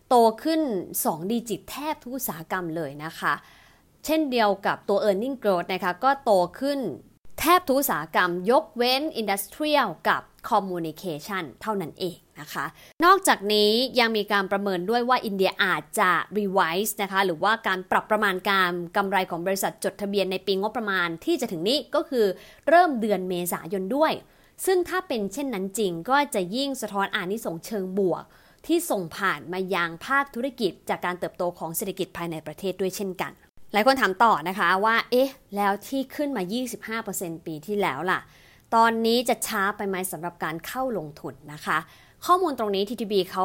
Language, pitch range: English, 185-245 Hz